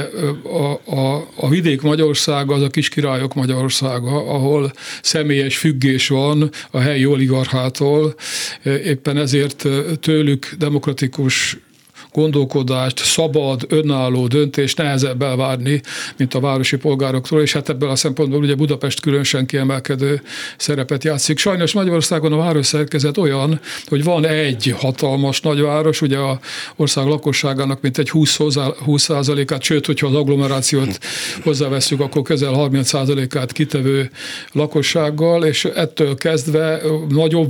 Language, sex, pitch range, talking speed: Hungarian, male, 135-150 Hz, 115 wpm